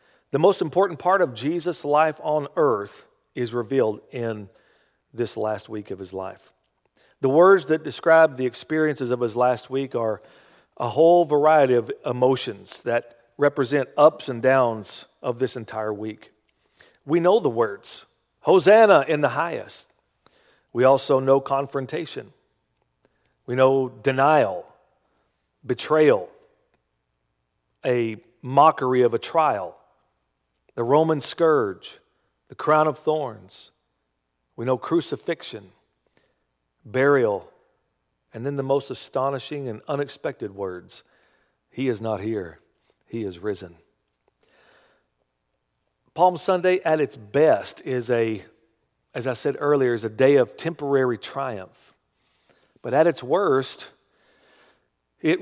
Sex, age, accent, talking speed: male, 50-69, American, 120 wpm